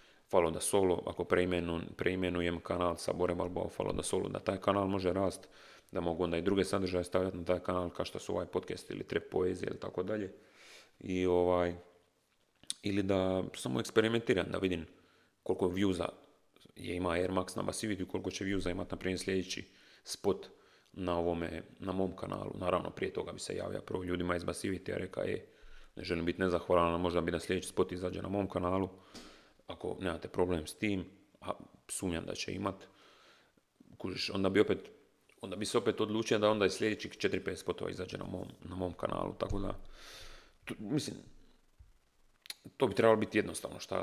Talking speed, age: 185 wpm, 30-49